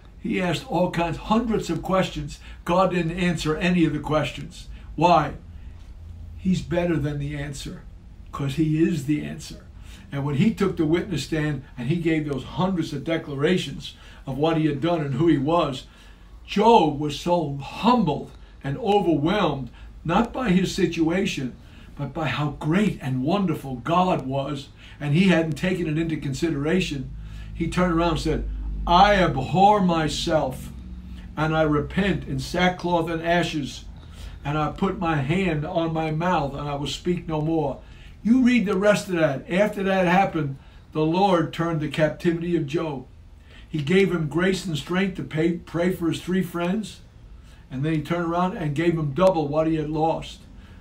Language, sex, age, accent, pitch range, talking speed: English, male, 60-79, American, 145-180 Hz, 170 wpm